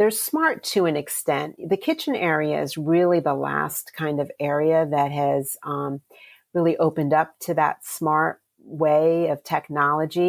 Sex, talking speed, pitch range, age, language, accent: female, 155 wpm, 145-175 Hz, 40-59, English, American